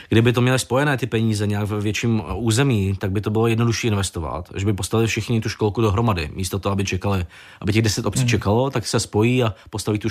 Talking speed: 225 wpm